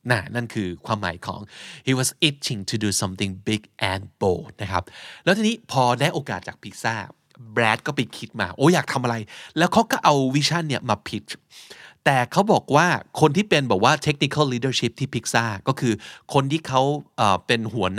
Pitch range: 105-145 Hz